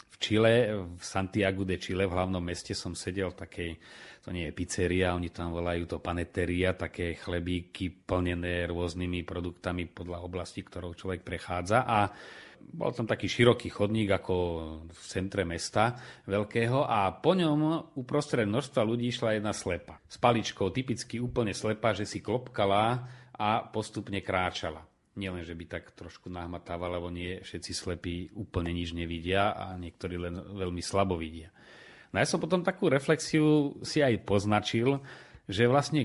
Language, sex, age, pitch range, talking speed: Slovak, male, 30-49, 90-120 Hz, 155 wpm